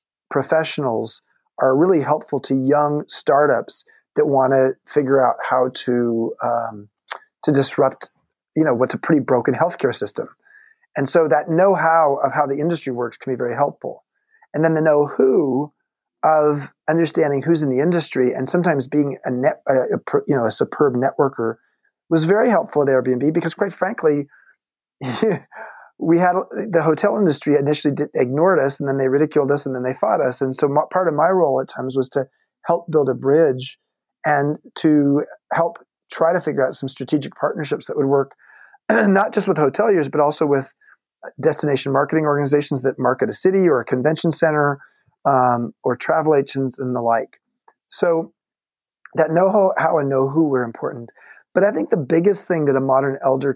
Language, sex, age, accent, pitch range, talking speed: English, male, 40-59, American, 135-165 Hz, 180 wpm